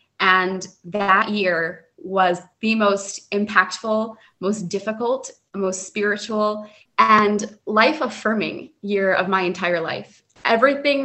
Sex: female